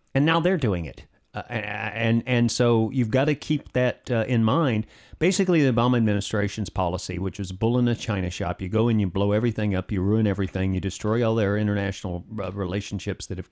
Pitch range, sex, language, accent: 95-115 Hz, male, English, American